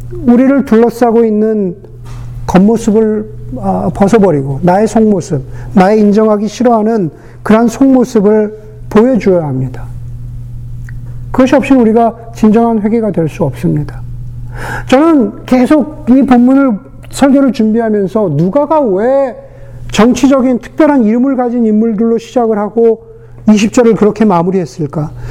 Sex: male